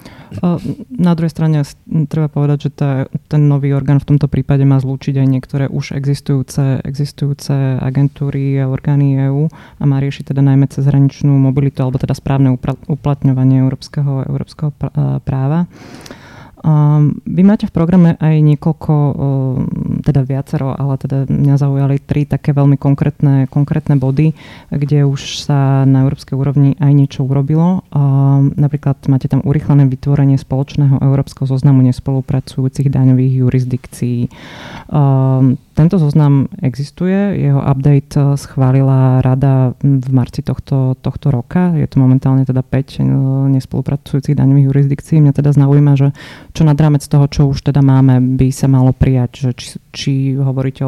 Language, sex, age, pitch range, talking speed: Slovak, female, 20-39, 135-145 Hz, 140 wpm